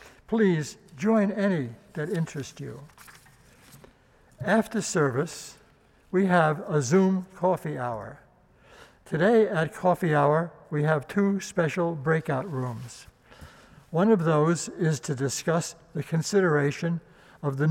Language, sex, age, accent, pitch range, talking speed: English, male, 60-79, American, 150-195 Hz, 115 wpm